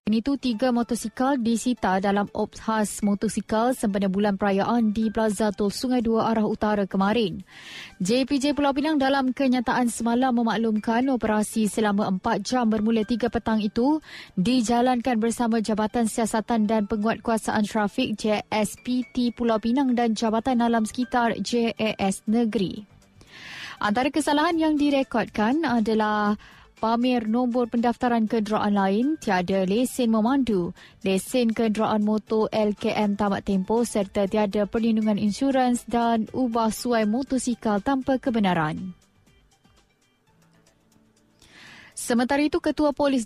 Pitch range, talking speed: 215-245 Hz, 110 wpm